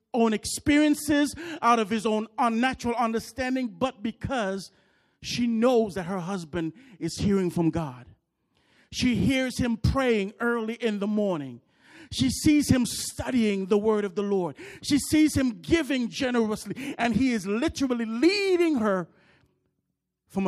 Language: English